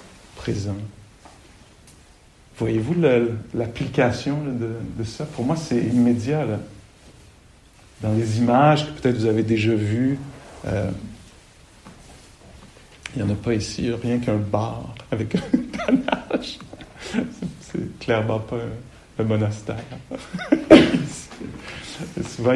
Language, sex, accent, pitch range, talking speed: English, male, French, 110-135 Hz, 105 wpm